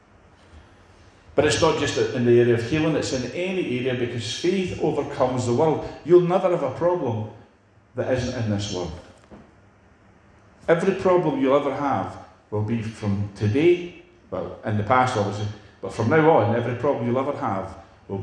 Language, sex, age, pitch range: English, male, 50-69, 100-145 Hz